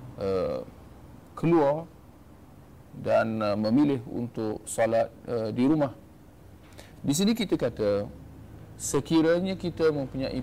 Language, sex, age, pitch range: Malay, male, 40-59, 110-150 Hz